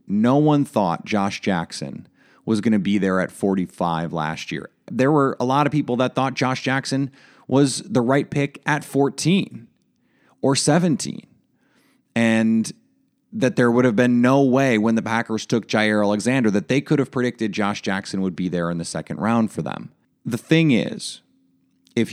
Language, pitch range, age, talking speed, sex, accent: English, 95-130 Hz, 30-49, 180 wpm, male, American